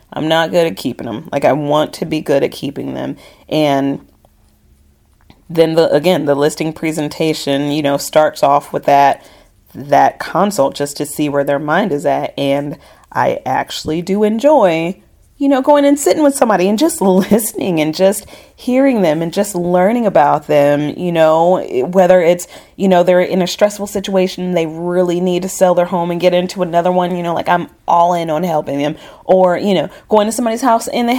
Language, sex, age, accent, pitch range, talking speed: English, female, 30-49, American, 160-210 Hz, 200 wpm